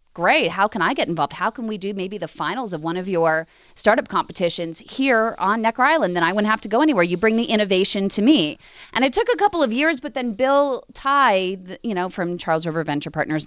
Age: 30-49